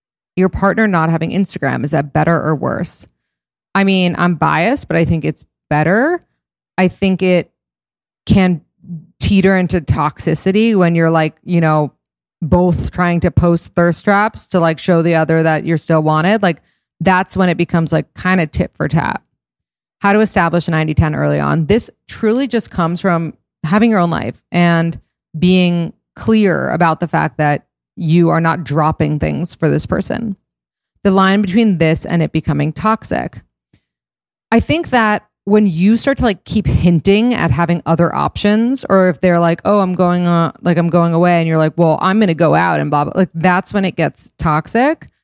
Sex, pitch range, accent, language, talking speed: female, 160-195 Hz, American, English, 185 wpm